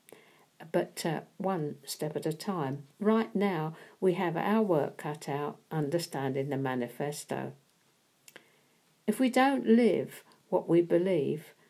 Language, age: English, 60-79